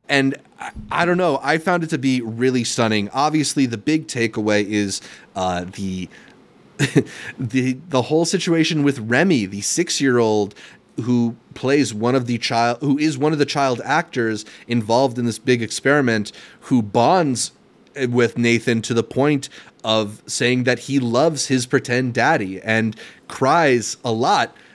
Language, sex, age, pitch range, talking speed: English, male, 30-49, 110-140 Hz, 155 wpm